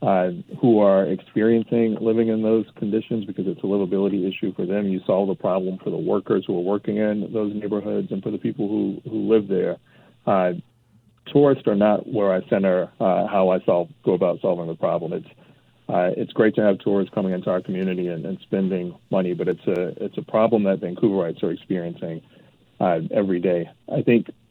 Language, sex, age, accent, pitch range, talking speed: English, male, 40-59, American, 90-110 Hz, 200 wpm